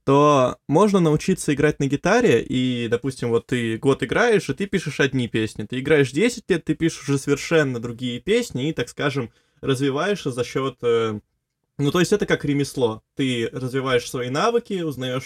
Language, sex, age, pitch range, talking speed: Russian, male, 20-39, 120-155 Hz, 175 wpm